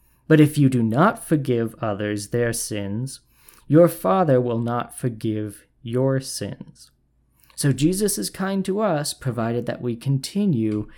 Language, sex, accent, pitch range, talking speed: English, male, American, 115-150 Hz, 140 wpm